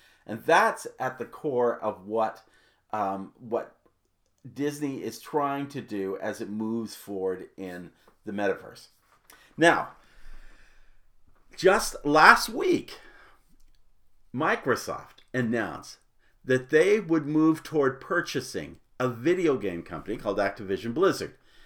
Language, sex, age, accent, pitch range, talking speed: English, male, 50-69, American, 105-145 Hz, 110 wpm